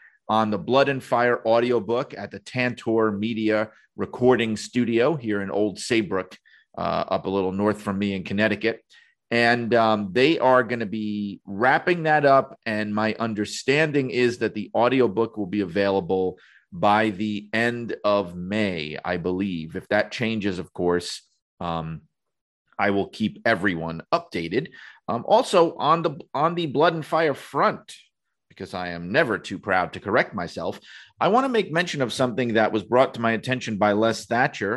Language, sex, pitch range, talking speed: English, male, 95-120 Hz, 170 wpm